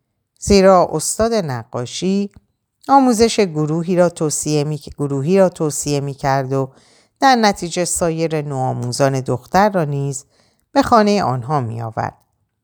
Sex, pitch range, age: female, 125-170 Hz, 50-69